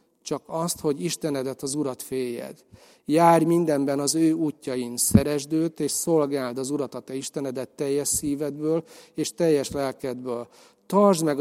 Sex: male